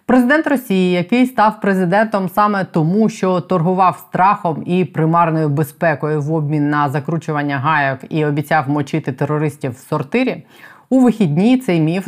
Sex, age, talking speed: female, 20-39, 140 wpm